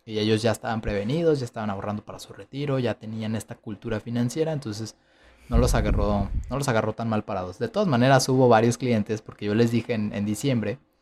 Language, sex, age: Spanish, male, 20-39